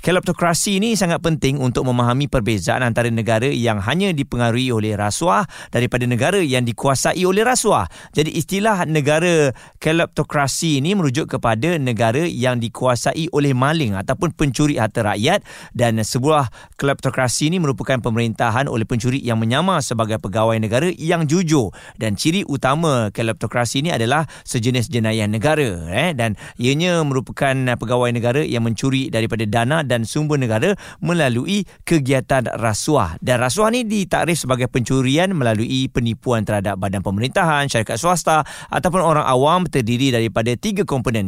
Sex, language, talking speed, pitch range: male, Malay, 135 wpm, 120-155 Hz